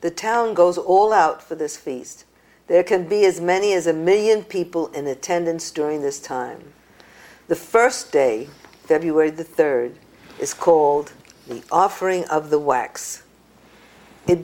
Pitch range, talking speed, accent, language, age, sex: 150-195 Hz, 150 wpm, American, English, 50-69, female